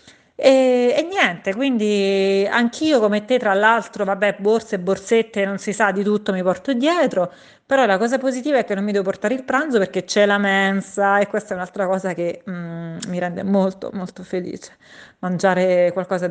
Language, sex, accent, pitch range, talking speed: Italian, female, native, 185-220 Hz, 185 wpm